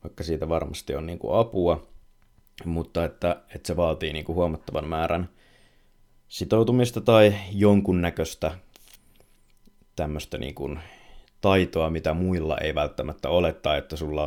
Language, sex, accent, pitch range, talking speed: Finnish, male, native, 80-100 Hz, 120 wpm